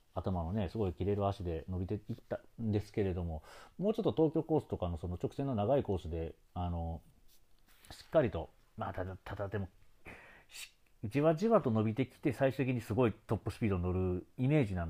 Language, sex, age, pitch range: Japanese, male, 40-59, 85-120 Hz